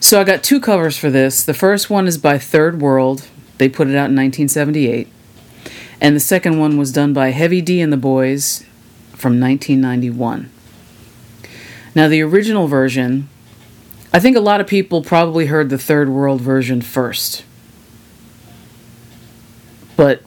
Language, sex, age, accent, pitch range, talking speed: English, female, 40-59, American, 125-155 Hz, 155 wpm